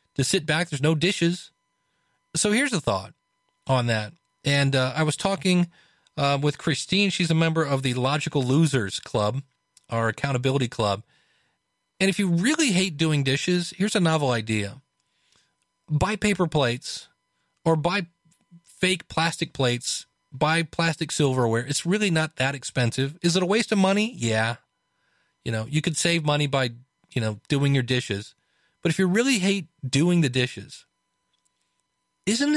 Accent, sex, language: American, male, English